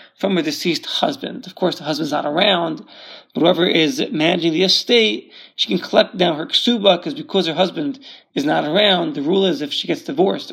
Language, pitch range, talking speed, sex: English, 180-240 Hz, 205 wpm, male